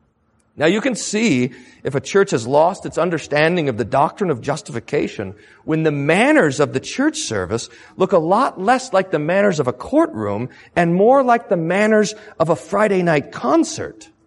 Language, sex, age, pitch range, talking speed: English, male, 40-59, 115-180 Hz, 180 wpm